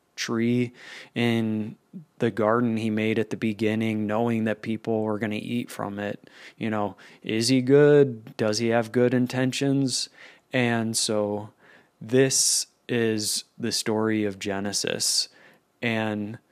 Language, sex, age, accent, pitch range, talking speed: English, male, 20-39, American, 110-125 Hz, 135 wpm